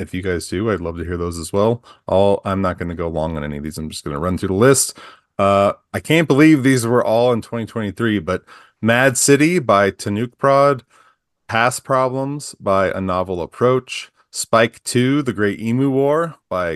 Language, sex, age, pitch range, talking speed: English, male, 30-49, 95-130 Hz, 200 wpm